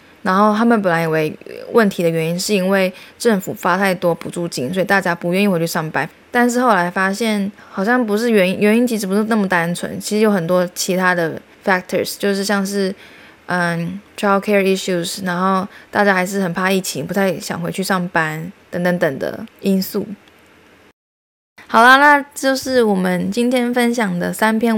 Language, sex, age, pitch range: Chinese, female, 20-39, 185-230 Hz